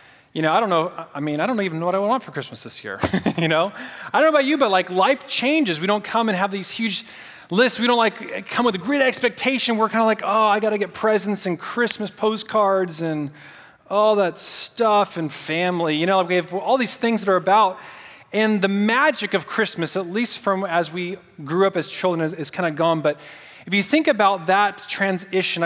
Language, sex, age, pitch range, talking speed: English, male, 30-49, 155-210 Hz, 230 wpm